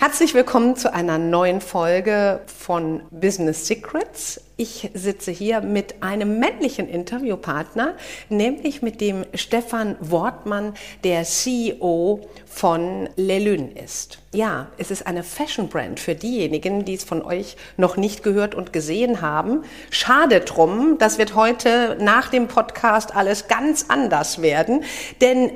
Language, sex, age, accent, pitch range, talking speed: German, female, 50-69, German, 175-235 Hz, 135 wpm